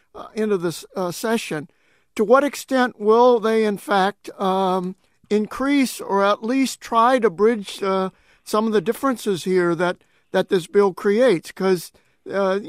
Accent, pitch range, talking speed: American, 185-220 Hz, 155 wpm